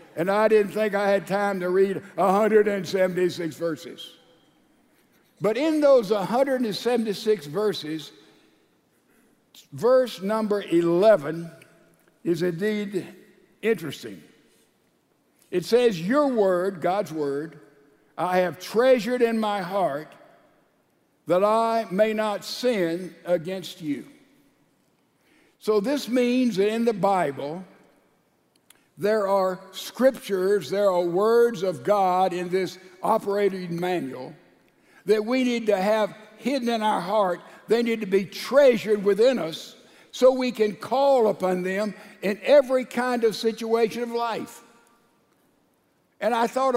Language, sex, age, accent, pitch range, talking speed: English, male, 60-79, American, 180-225 Hz, 120 wpm